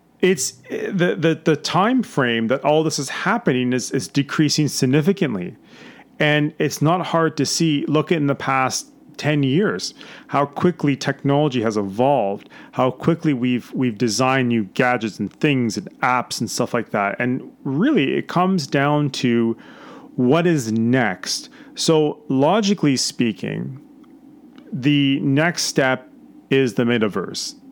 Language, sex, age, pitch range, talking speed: English, male, 40-59, 125-160 Hz, 145 wpm